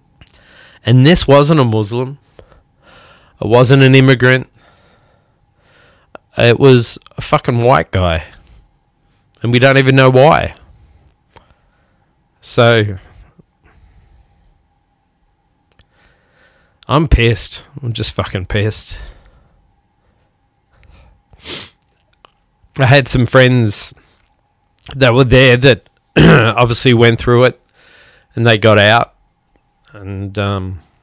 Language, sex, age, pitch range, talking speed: English, male, 20-39, 100-130 Hz, 90 wpm